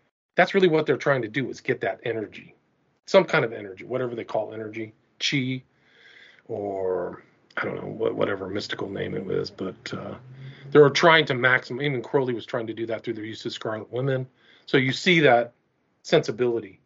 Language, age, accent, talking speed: English, 40-59, American, 190 wpm